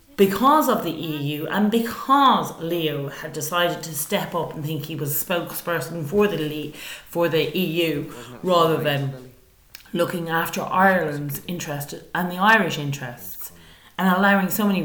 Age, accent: 30-49, Irish